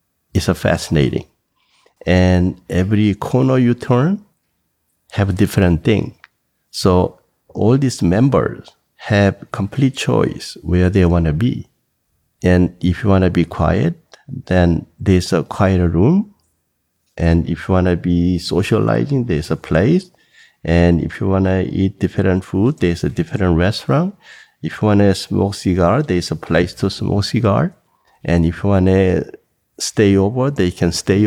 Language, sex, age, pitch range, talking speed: English, male, 50-69, 85-110 Hz, 140 wpm